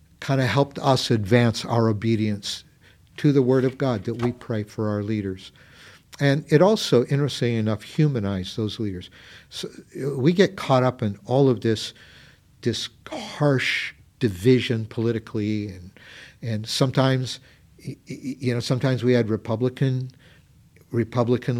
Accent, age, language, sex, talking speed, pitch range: American, 50-69, English, male, 135 wpm, 110-125 Hz